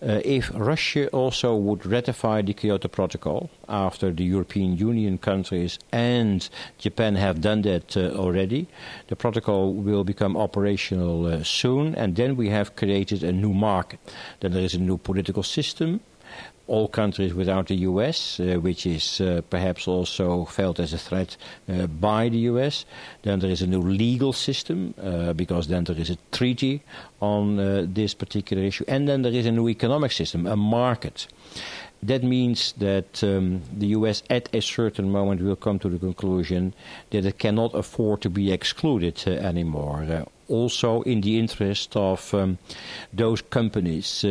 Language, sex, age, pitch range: English, male, 60-79, 95-115 Hz